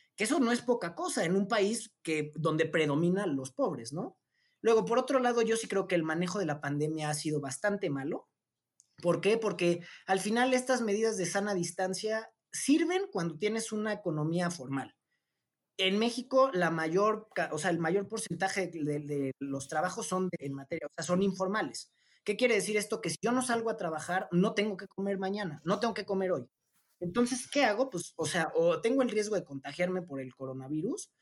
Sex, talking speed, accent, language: male, 205 wpm, Mexican, Spanish